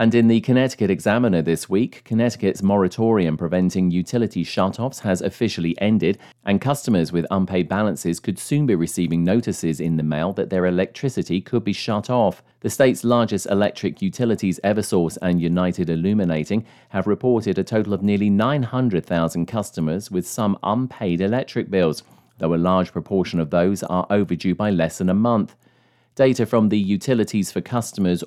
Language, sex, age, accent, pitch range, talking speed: English, male, 40-59, British, 90-110 Hz, 160 wpm